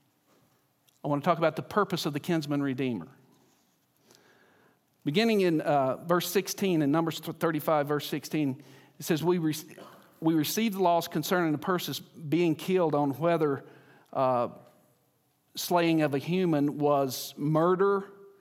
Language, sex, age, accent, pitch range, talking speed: English, male, 50-69, American, 140-175 Hz, 135 wpm